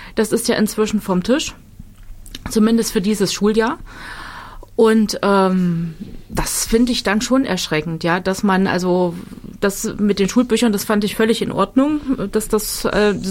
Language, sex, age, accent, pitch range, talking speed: German, female, 30-49, German, 195-225 Hz, 160 wpm